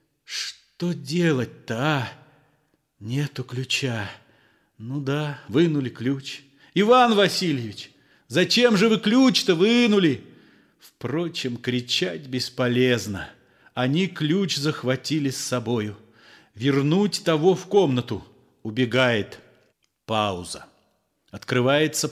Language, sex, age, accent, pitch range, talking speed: Russian, male, 40-59, native, 115-165 Hz, 80 wpm